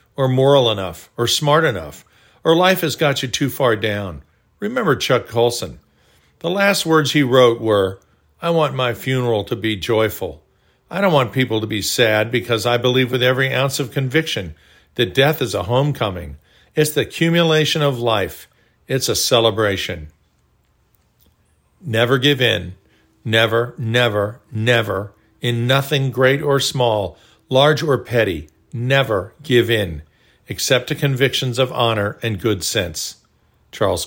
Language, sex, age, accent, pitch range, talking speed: English, male, 50-69, American, 110-150 Hz, 150 wpm